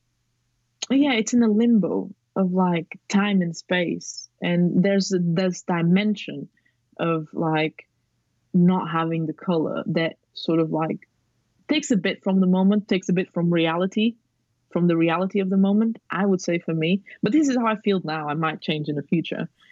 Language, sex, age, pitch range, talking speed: English, female, 20-39, 155-185 Hz, 180 wpm